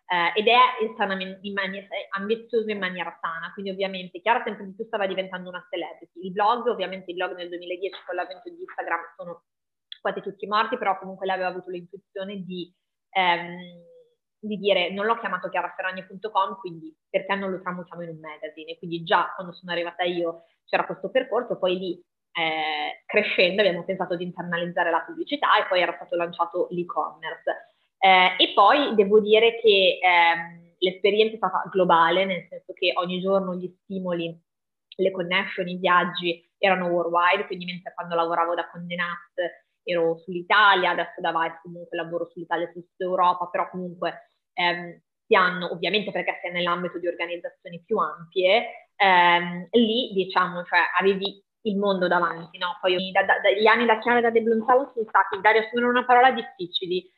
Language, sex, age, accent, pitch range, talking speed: Italian, female, 20-39, native, 175-200 Hz, 170 wpm